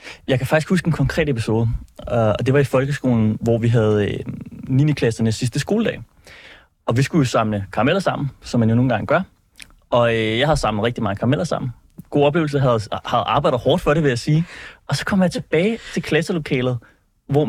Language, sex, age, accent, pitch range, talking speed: Danish, male, 20-39, native, 120-150 Hz, 215 wpm